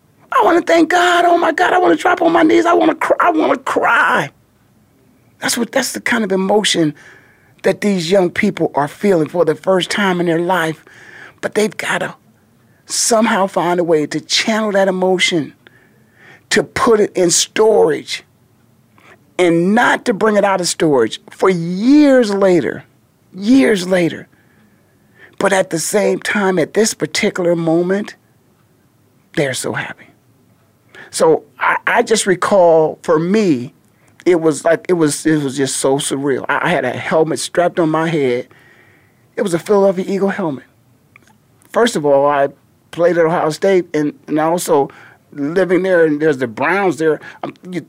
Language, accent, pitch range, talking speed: English, American, 160-225 Hz, 170 wpm